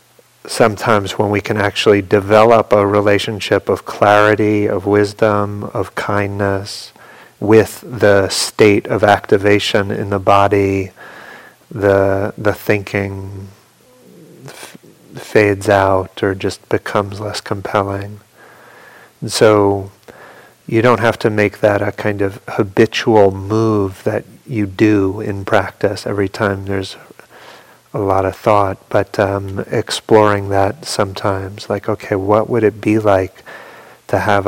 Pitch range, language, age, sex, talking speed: 100-105 Hz, English, 30-49, male, 125 wpm